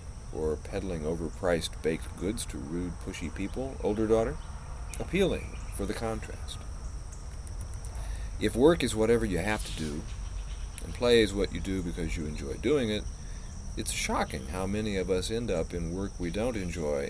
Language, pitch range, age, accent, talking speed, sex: English, 80-100 Hz, 40-59, American, 165 wpm, male